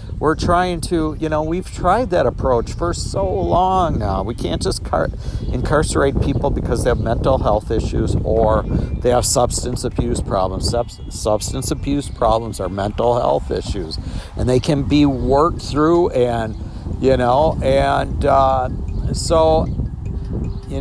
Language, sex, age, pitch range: English, male, 50-69, 110-140 Hz